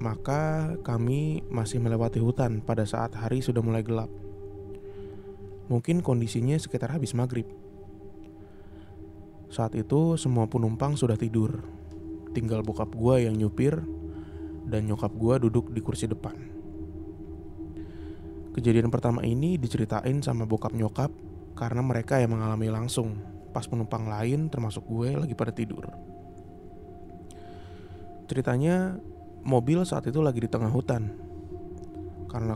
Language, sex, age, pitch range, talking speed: Indonesian, male, 20-39, 100-125 Hz, 115 wpm